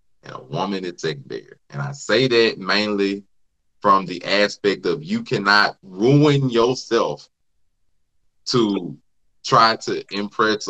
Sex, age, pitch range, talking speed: male, 20-39, 95-145 Hz, 130 wpm